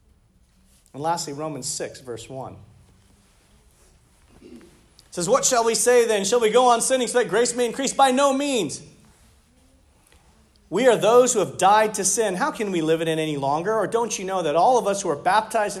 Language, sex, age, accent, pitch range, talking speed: English, male, 40-59, American, 155-230 Hz, 200 wpm